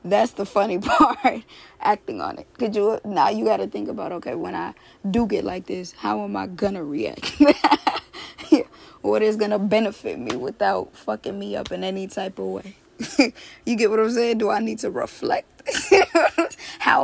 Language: English